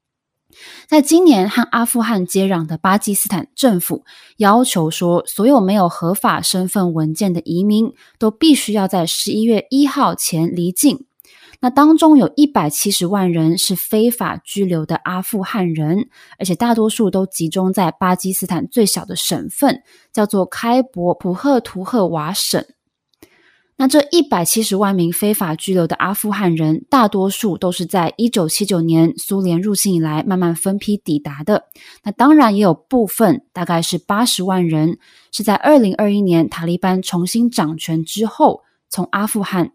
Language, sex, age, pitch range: Chinese, female, 20-39, 175-235 Hz